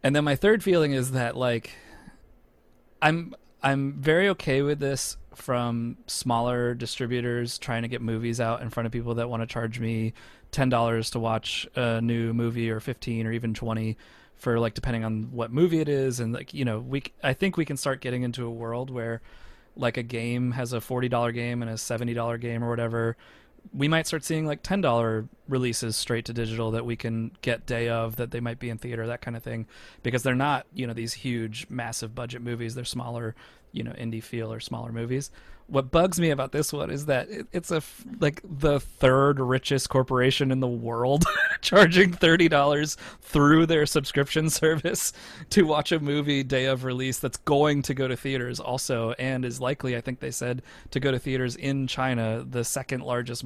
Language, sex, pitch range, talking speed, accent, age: English, male, 115-140 Hz, 200 wpm, American, 20-39